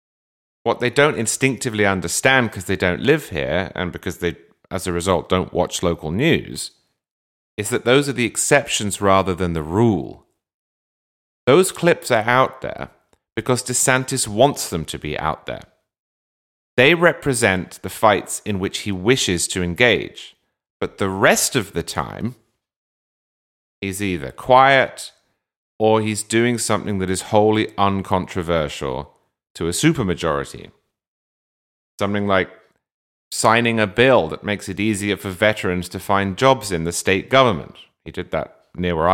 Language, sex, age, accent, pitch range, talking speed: English, male, 30-49, British, 90-115 Hz, 145 wpm